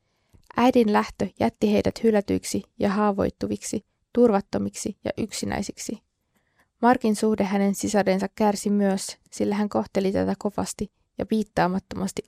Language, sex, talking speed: Finnish, female, 110 wpm